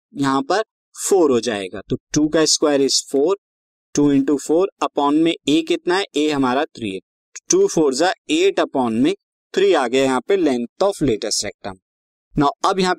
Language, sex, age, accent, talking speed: Hindi, male, 20-39, native, 90 wpm